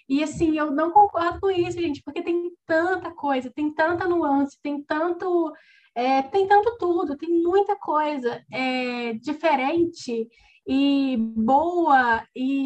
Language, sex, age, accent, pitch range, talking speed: Portuguese, female, 10-29, Brazilian, 270-345 Hz, 135 wpm